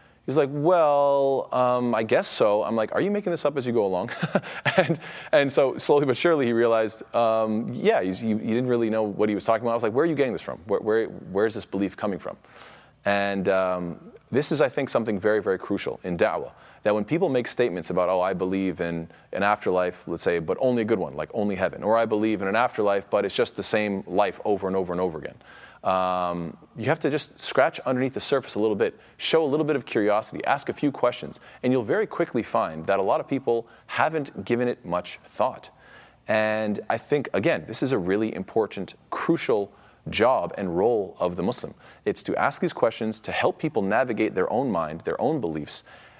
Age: 30-49